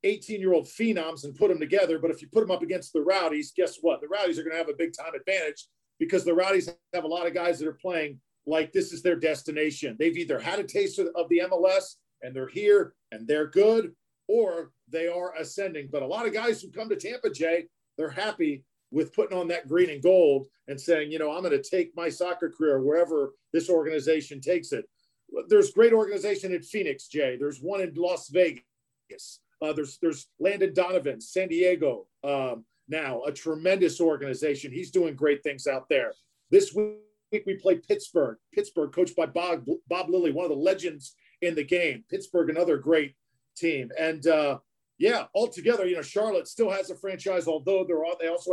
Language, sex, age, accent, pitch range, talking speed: English, male, 40-59, American, 155-205 Hz, 200 wpm